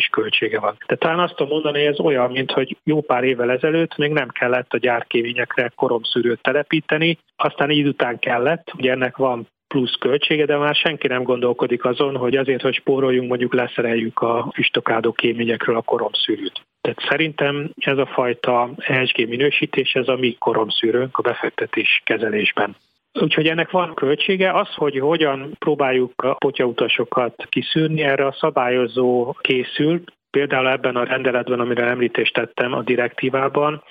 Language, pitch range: Hungarian, 120-145 Hz